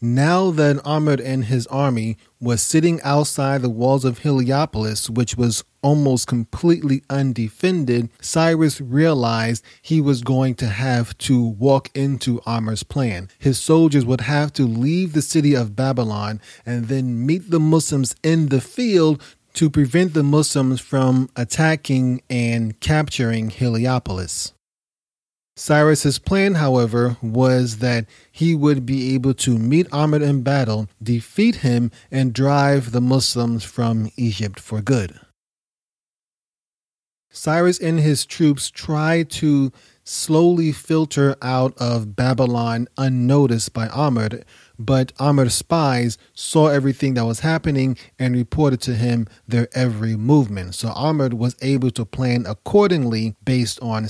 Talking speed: 130 wpm